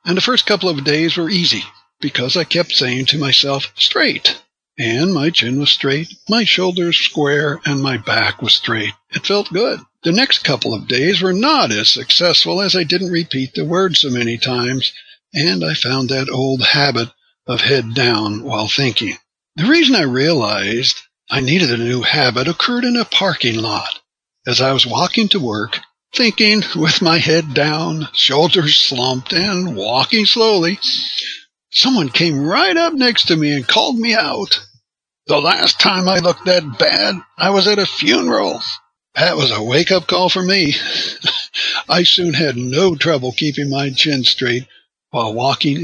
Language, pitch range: English, 130-190 Hz